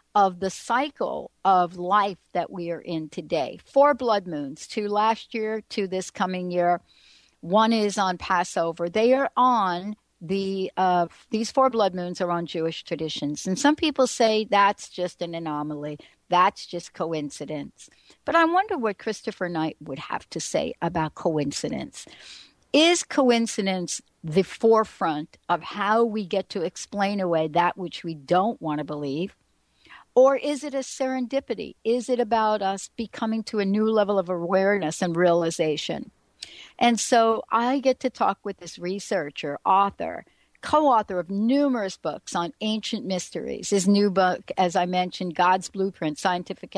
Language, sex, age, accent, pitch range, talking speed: English, female, 60-79, American, 175-230 Hz, 155 wpm